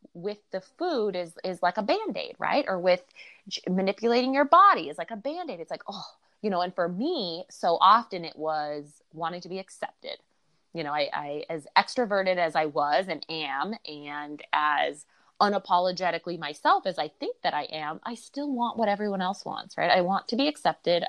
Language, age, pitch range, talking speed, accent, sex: English, 20-39, 155-200 Hz, 195 wpm, American, female